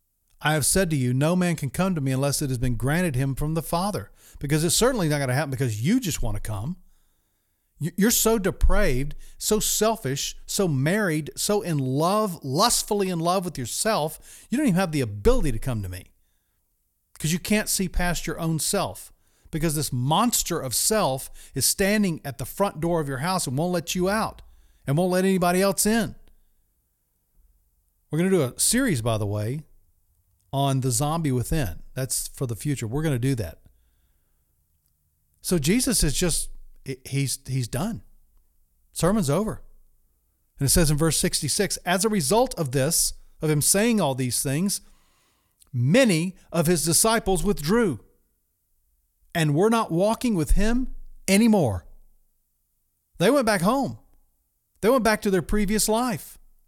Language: English